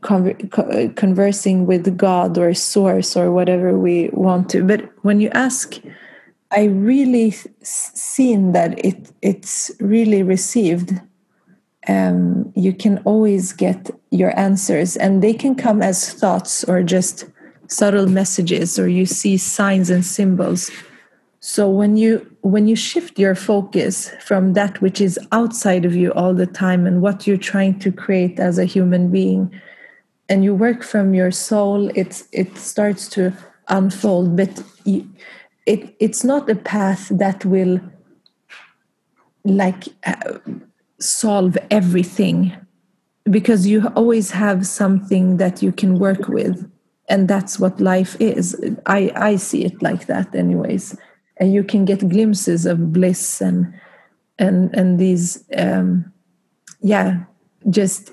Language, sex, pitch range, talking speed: English, female, 185-210 Hz, 135 wpm